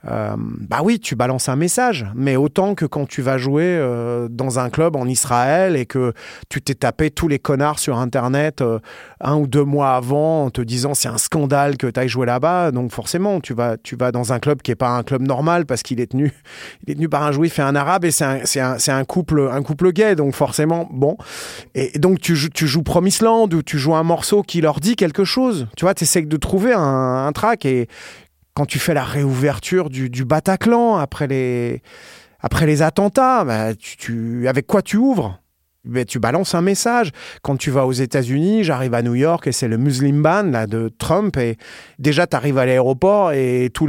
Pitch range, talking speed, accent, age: 130-170 Hz, 225 wpm, French, 30-49